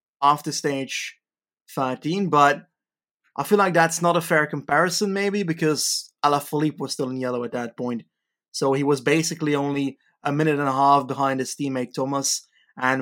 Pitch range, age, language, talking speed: 130-160 Hz, 20-39, English, 170 wpm